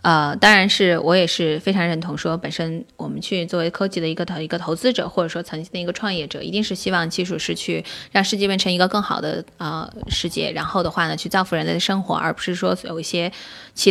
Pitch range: 175-230 Hz